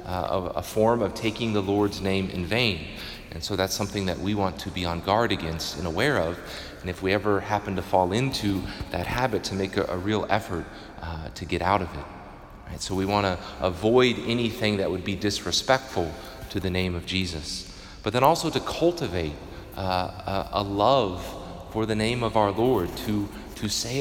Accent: American